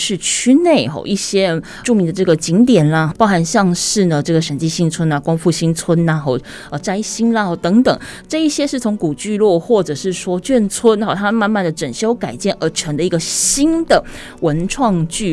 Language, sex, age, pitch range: Chinese, female, 20-39, 165-240 Hz